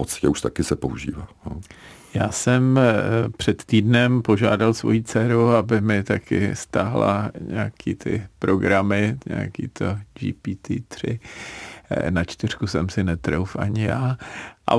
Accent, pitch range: native, 100-115 Hz